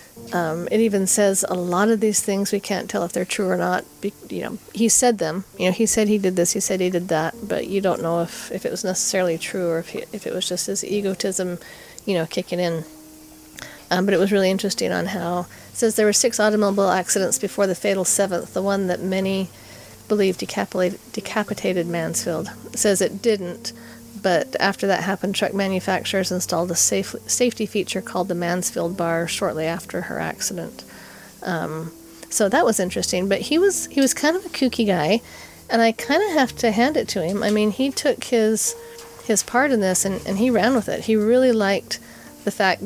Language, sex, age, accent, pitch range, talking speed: English, female, 40-59, American, 180-215 Hz, 215 wpm